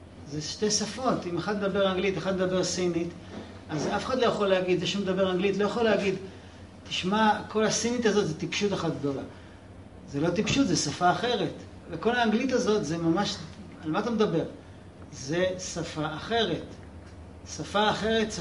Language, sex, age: Hebrew, male, 40-59